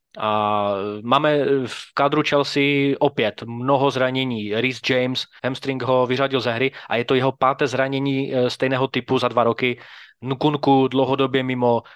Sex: male